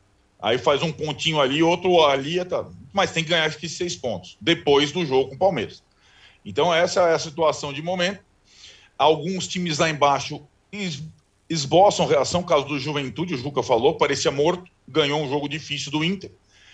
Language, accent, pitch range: Portuguese, Brazilian, 130-180 Hz